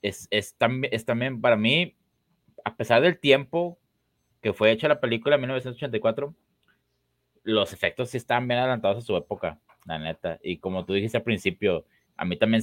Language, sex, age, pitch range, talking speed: Spanish, male, 30-49, 85-115 Hz, 180 wpm